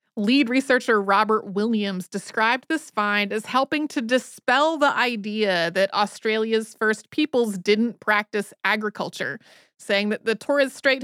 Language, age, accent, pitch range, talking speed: English, 30-49, American, 190-250 Hz, 135 wpm